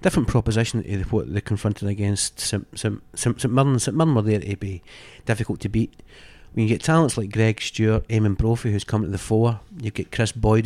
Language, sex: English, male